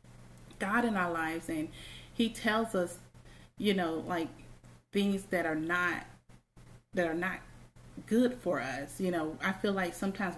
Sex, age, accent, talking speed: female, 30-49, American, 155 wpm